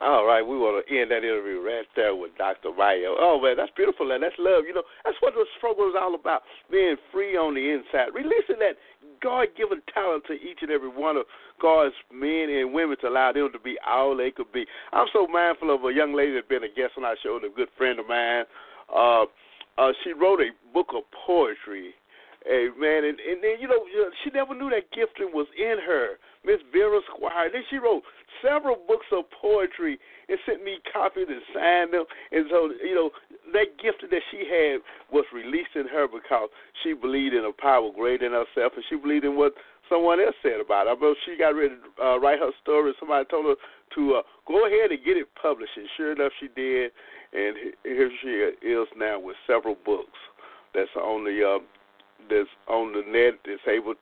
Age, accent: 50-69, American